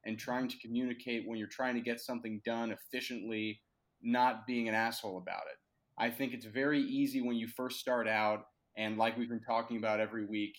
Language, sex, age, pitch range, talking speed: English, male, 30-49, 110-125 Hz, 205 wpm